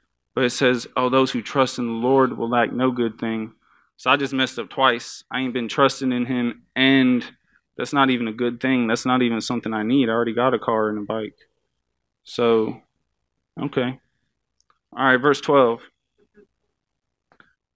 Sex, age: male, 20-39